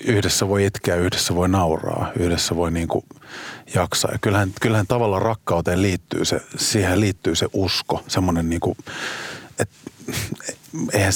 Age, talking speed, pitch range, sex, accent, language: 30-49, 130 wpm, 90-125 Hz, male, native, Finnish